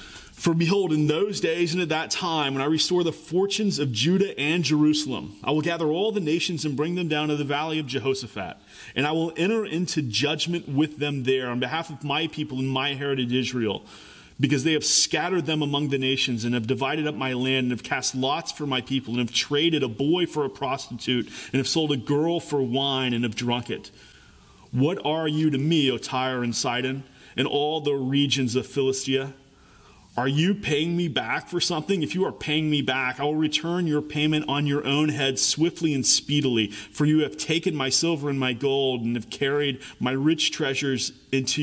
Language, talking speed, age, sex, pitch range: English, 210 wpm, 30-49, male, 130-155 Hz